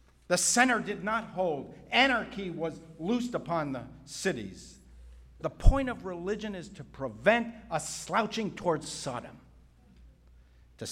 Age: 50-69